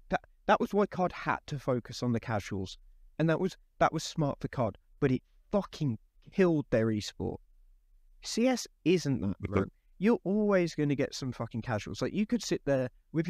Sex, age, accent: male, 20-39, British